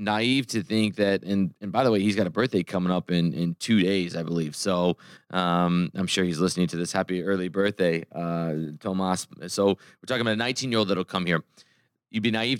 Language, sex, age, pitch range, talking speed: English, male, 20-39, 95-110 Hz, 220 wpm